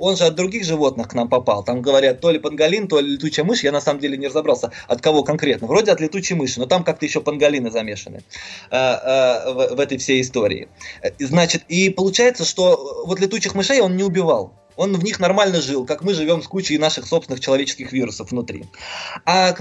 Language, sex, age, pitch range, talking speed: Russian, male, 20-39, 145-190 Hz, 210 wpm